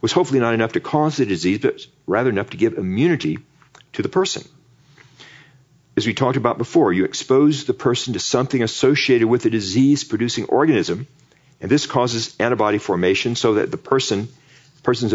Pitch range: 115-145 Hz